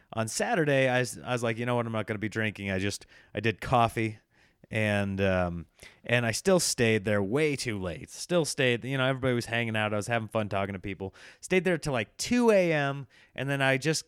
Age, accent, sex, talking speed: 30-49, American, male, 240 wpm